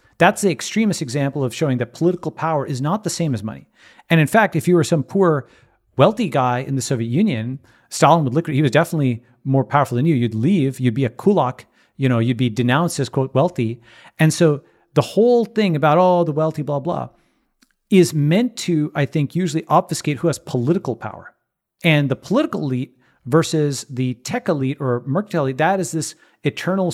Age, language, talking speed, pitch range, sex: 40-59, English, 205 wpm, 130-170 Hz, male